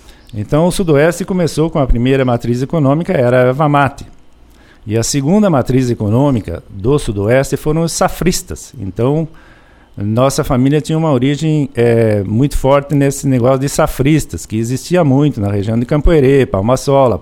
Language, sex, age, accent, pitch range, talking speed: Portuguese, male, 50-69, Brazilian, 120-155 Hz, 150 wpm